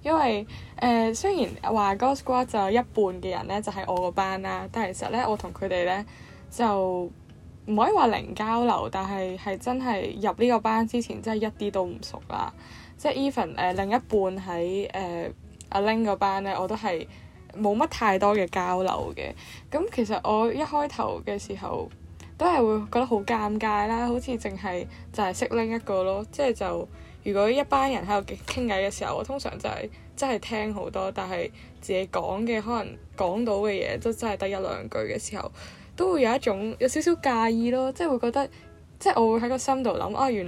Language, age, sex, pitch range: Chinese, 10-29, female, 190-240 Hz